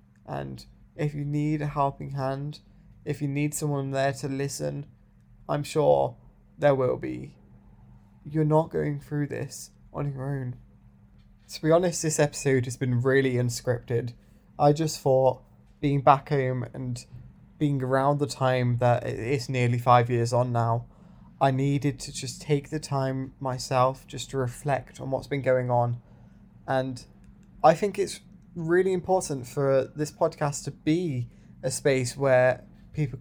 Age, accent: 20-39, British